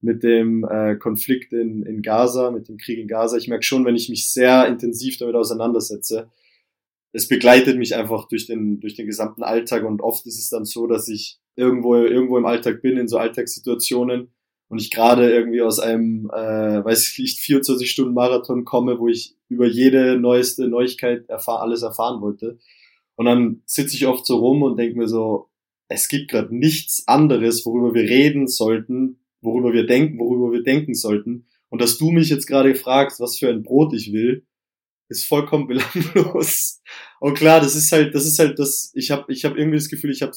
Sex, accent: male, German